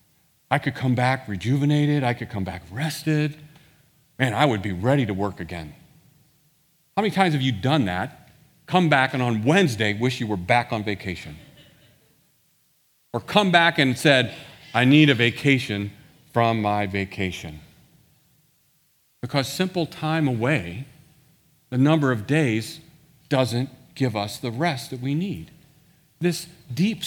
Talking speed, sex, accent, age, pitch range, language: 145 wpm, male, American, 40-59, 125-160 Hz, English